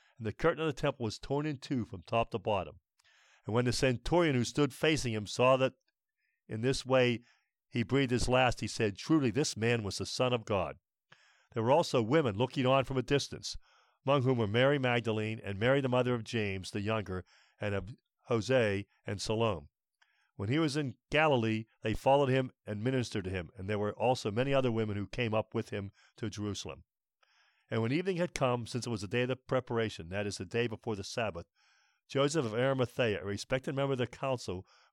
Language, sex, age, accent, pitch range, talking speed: English, male, 50-69, American, 110-135 Hz, 210 wpm